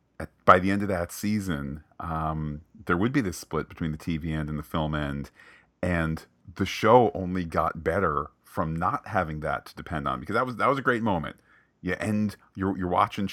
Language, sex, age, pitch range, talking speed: English, male, 40-59, 80-100 Hz, 205 wpm